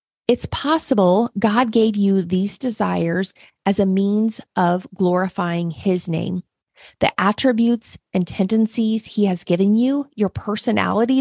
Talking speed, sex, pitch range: 130 wpm, female, 185-225 Hz